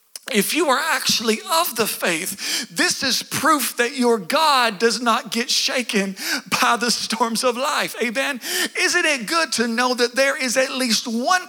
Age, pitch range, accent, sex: 50-69, 225-295 Hz, American, male